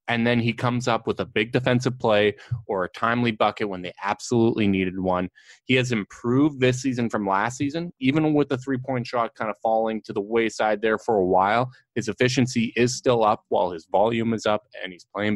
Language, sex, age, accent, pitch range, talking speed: English, male, 20-39, American, 105-125 Hz, 215 wpm